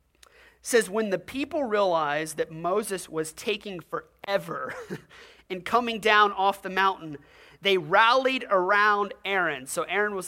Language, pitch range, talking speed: English, 165-230 Hz, 140 wpm